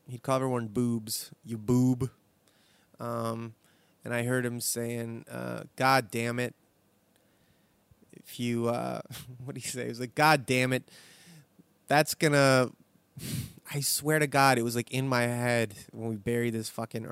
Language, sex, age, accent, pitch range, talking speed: English, male, 20-39, American, 120-140 Hz, 160 wpm